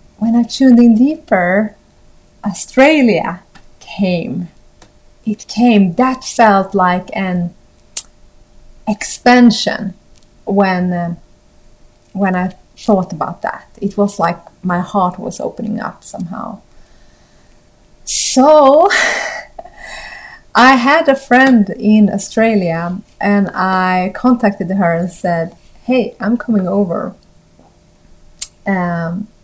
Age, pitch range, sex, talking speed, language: 30-49, 185-230 Hz, female, 100 wpm, Swedish